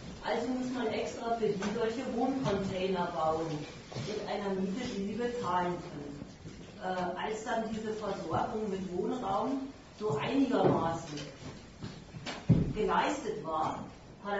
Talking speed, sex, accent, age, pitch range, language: 115 wpm, female, German, 40-59, 180-225 Hz, German